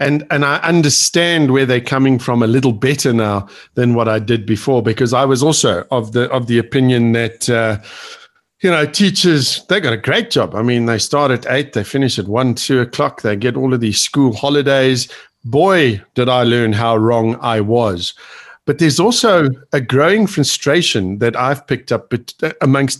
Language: English